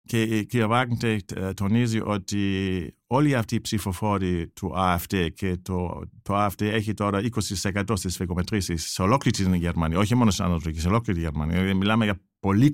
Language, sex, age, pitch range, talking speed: Greek, male, 50-69, 95-125 Hz, 165 wpm